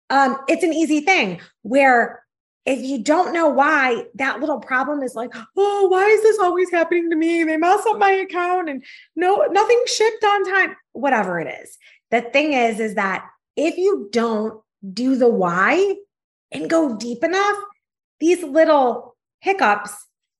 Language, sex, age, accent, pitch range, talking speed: English, female, 30-49, American, 225-335 Hz, 165 wpm